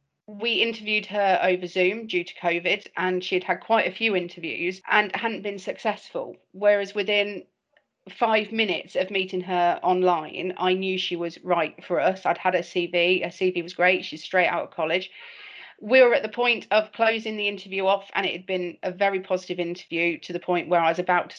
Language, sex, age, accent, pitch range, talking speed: English, female, 40-59, British, 175-220 Hz, 210 wpm